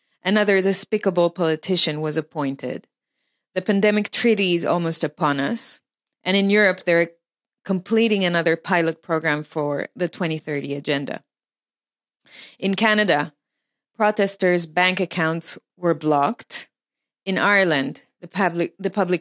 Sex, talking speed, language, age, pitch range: female, 110 wpm, English, 30-49, 160-200 Hz